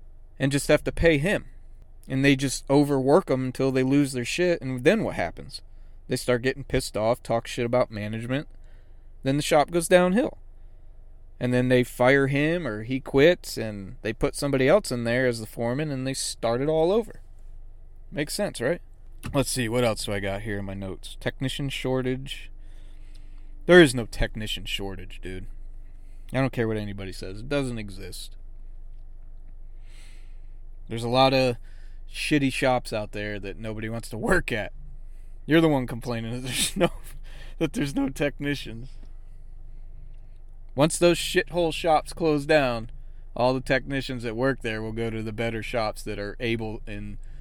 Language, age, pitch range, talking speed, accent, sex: English, 30-49, 95-135 Hz, 170 wpm, American, male